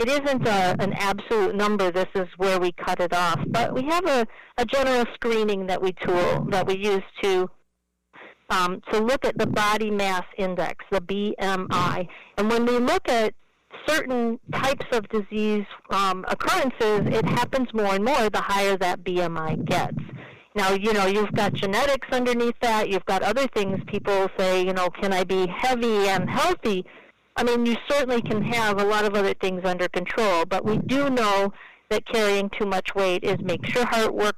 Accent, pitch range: American, 185-225 Hz